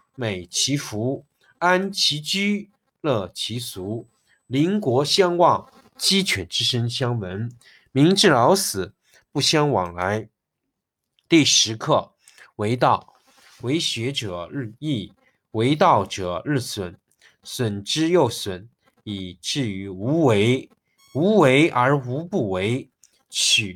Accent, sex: native, male